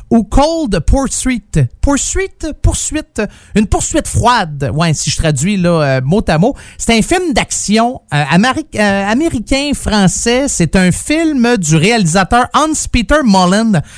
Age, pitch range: 30-49, 150-205 Hz